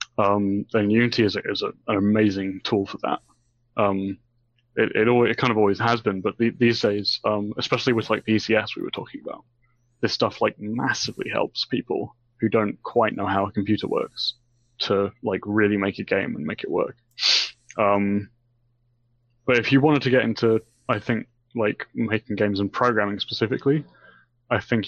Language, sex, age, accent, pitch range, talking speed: English, male, 20-39, British, 105-120 Hz, 185 wpm